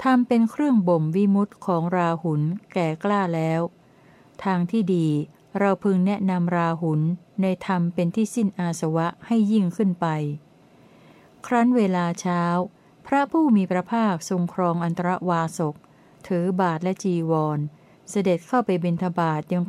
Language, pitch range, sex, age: Thai, 165-200 Hz, female, 60-79